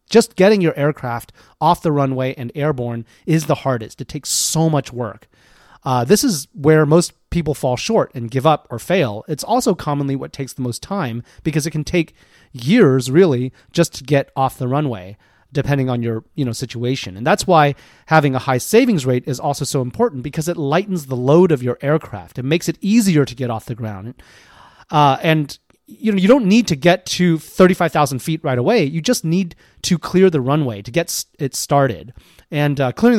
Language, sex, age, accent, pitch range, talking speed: English, male, 30-49, American, 130-165 Hz, 205 wpm